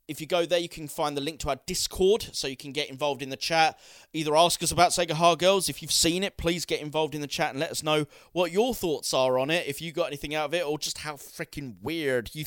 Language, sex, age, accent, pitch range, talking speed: English, male, 30-49, British, 125-165 Hz, 290 wpm